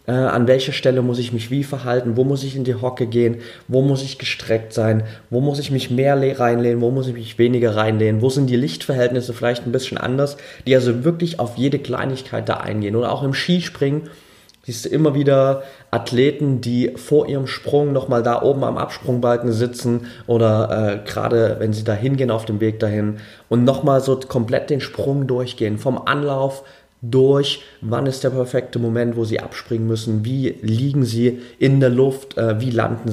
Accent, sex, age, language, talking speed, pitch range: German, male, 20-39, German, 190 wpm, 115-130 Hz